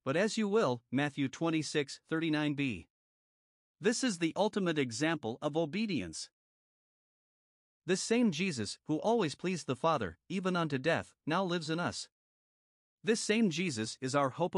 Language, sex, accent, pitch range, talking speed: English, male, American, 135-180 Hz, 145 wpm